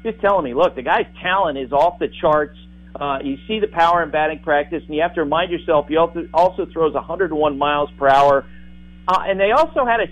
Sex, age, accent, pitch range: male, 50-69, American, 150-200 Hz